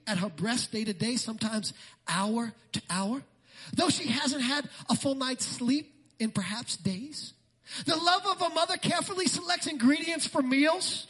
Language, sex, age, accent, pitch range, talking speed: English, male, 40-59, American, 215-290 Hz, 170 wpm